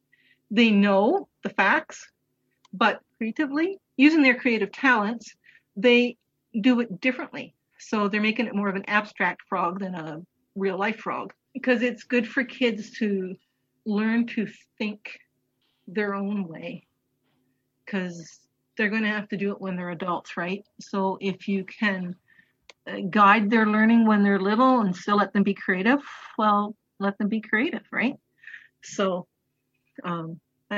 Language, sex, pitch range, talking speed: English, female, 190-245 Hz, 145 wpm